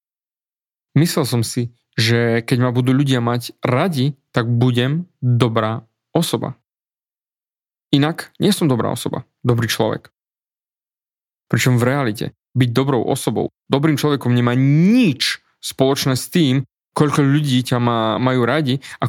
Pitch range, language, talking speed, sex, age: 120-155 Hz, Slovak, 125 wpm, male, 20-39